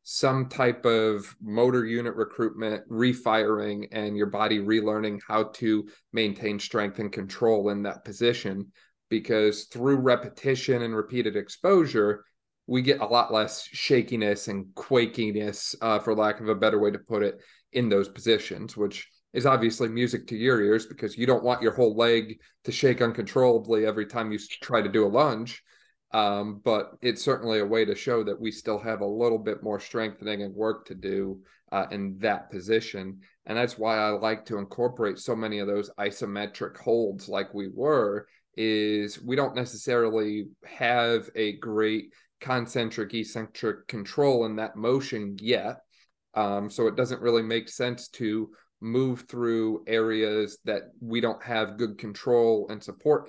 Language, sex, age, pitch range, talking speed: English, male, 30-49, 105-120 Hz, 165 wpm